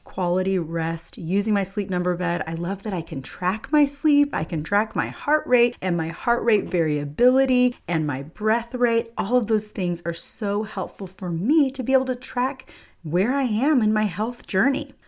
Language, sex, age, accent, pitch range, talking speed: English, female, 30-49, American, 170-235 Hz, 205 wpm